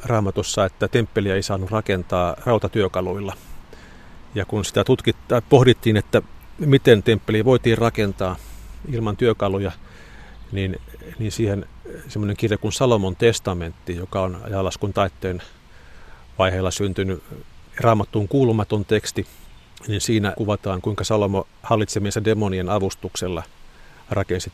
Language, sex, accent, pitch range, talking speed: Finnish, male, native, 95-110 Hz, 110 wpm